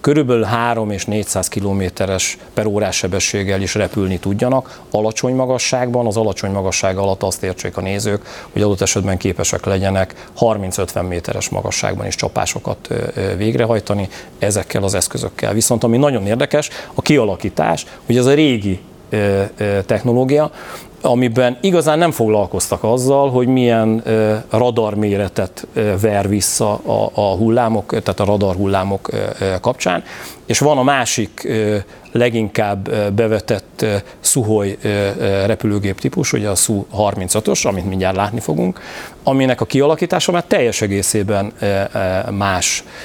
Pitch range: 100-120 Hz